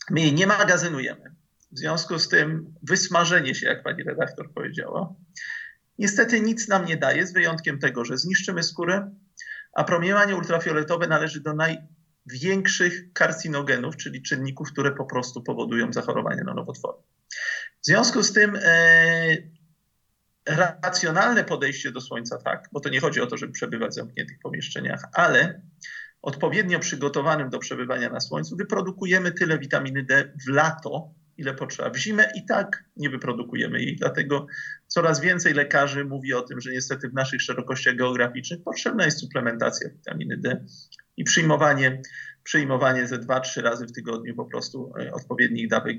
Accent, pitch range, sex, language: native, 135-190 Hz, male, Polish